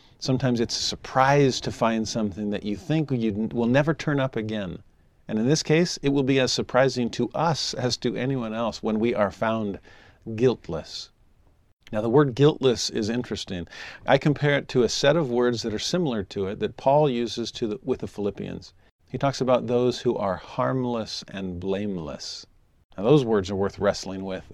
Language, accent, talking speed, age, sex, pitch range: English, American, 195 wpm, 40-59, male, 105-140 Hz